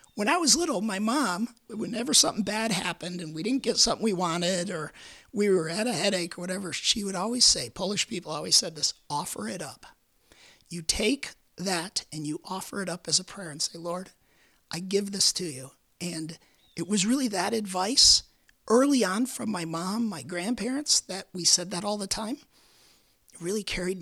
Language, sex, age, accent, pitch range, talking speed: English, male, 50-69, American, 170-220 Hz, 195 wpm